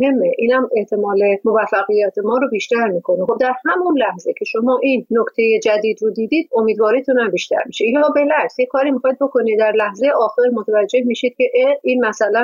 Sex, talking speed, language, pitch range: female, 180 wpm, Persian, 210-265 Hz